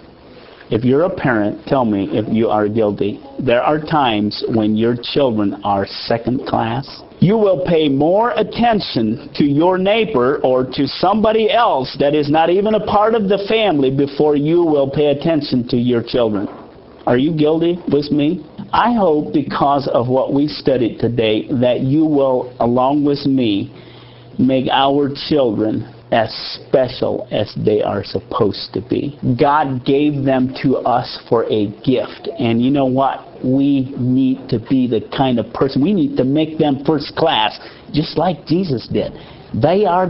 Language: English